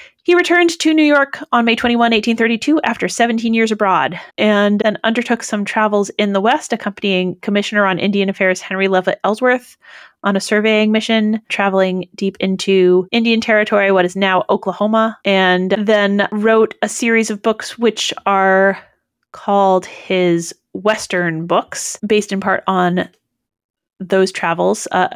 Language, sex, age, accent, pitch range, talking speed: English, female, 30-49, American, 190-230 Hz, 150 wpm